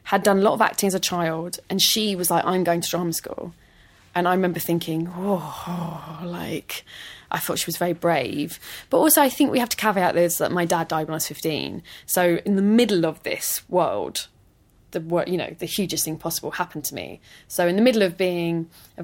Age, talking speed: 20-39, 225 wpm